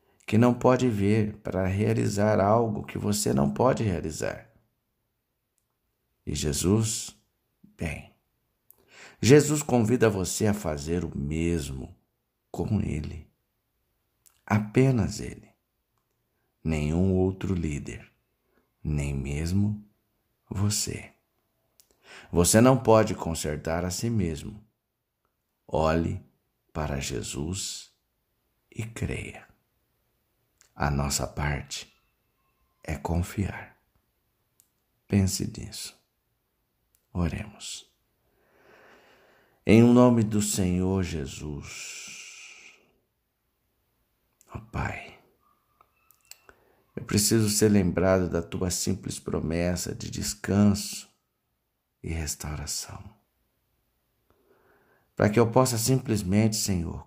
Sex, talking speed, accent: male, 80 wpm, Brazilian